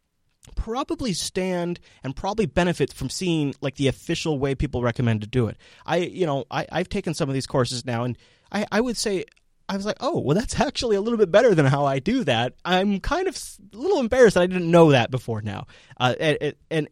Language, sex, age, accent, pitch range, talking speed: English, male, 30-49, American, 115-165 Hz, 220 wpm